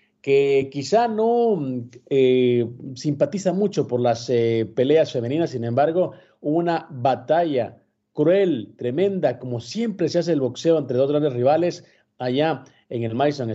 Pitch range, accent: 120-165 Hz, Mexican